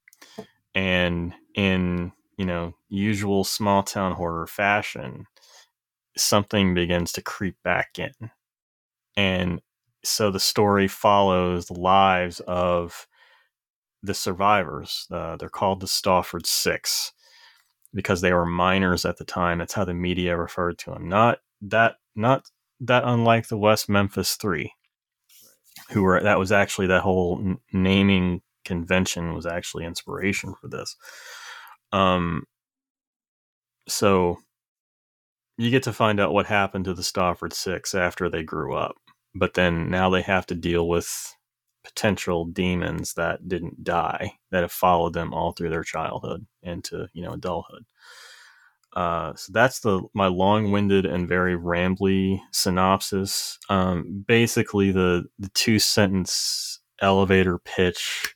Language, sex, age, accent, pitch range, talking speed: English, male, 30-49, American, 90-105 Hz, 130 wpm